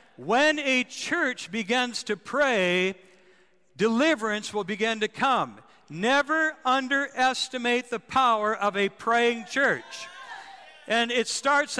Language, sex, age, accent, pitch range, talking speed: English, male, 60-79, American, 185-245 Hz, 110 wpm